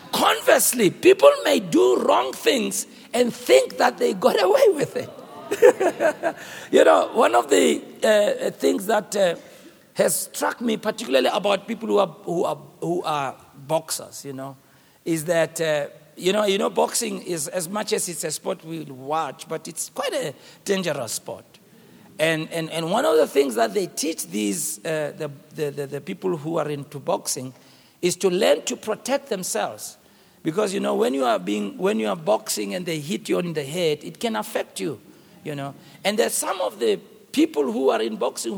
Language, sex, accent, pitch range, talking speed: English, male, South African, 165-270 Hz, 190 wpm